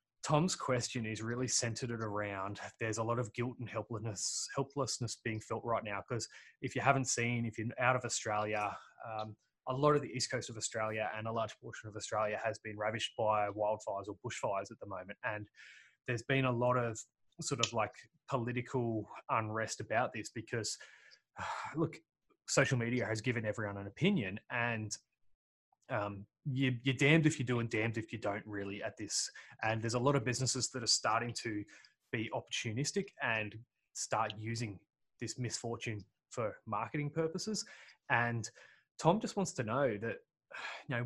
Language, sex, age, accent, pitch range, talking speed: English, male, 20-39, Australian, 110-130 Hz, 175 wpm